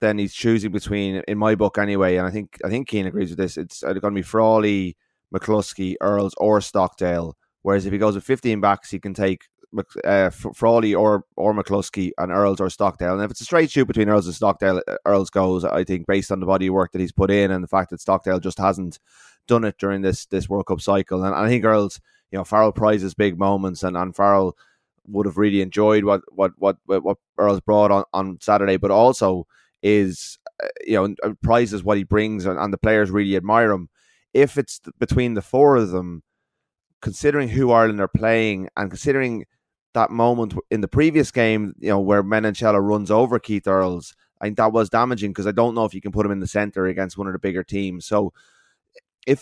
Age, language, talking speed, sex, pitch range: 20-39, English, 215 wpm, male, 95-110 Hz